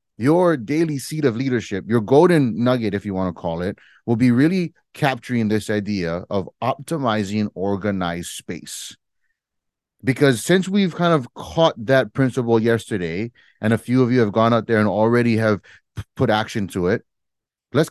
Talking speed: 170 wpm